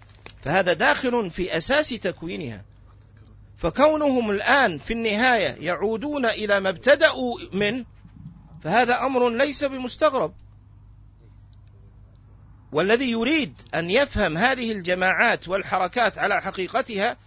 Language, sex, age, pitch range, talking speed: Arabic, male, 50-69, 160-255 Hz, 95 wpm